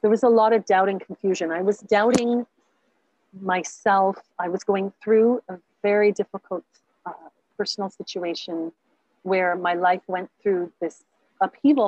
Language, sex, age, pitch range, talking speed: English, female, 40-59, 175-215 Hz, 145 wpm